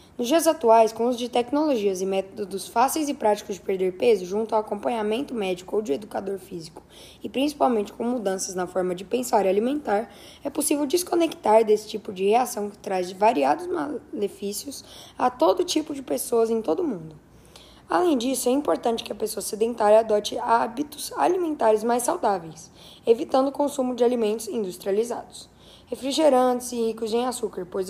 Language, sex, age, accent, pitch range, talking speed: Portuguese, female, 10-29, Brazilian, 205-260 Hz, 170 wpm